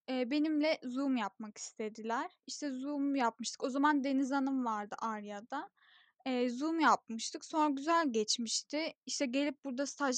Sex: female